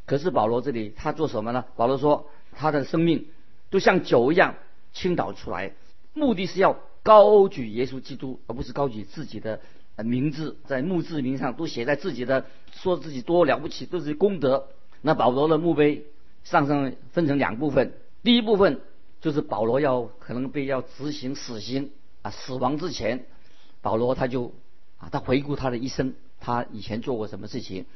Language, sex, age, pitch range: Chinese, male, 50-69, 120-155 Hz